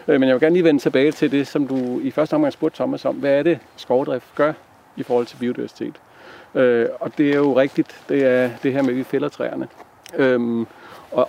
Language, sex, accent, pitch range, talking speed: Danish, male, native, 115-140 Hz, 220 wpm